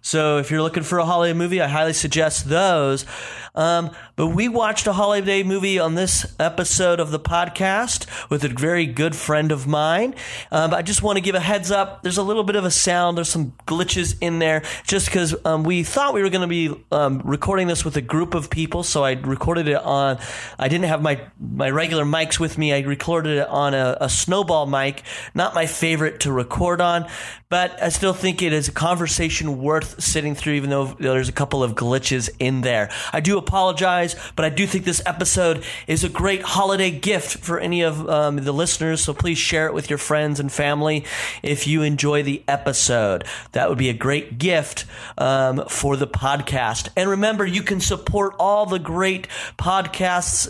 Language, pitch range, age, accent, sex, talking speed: English, 145-180 Hz, 30-49, American, male, 205 wpm